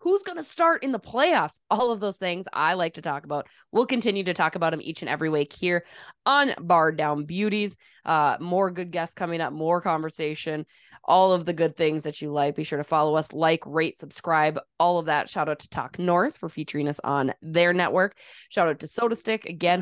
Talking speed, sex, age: 225 wpm, female, 20-39